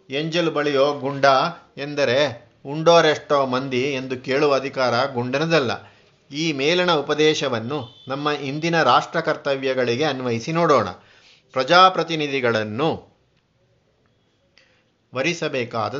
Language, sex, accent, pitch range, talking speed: Kannada, male, native, 125-155 Hz, 80 wpm